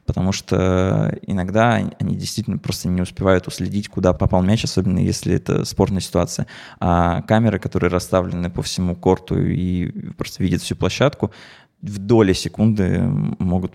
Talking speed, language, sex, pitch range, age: 145 wpm, Russian, male, 90-110 Hz, 20-39